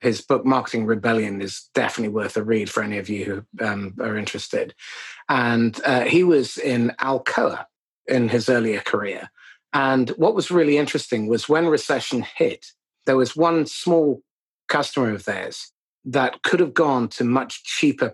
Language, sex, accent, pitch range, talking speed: English, male, British, 120-160 Hz, 165 wpm